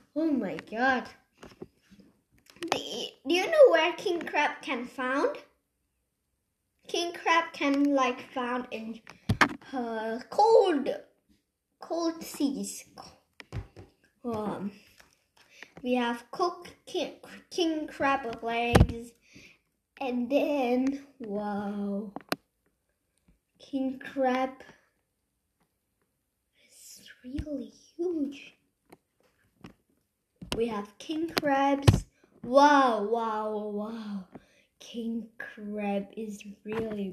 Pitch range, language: 215-290 Hz, English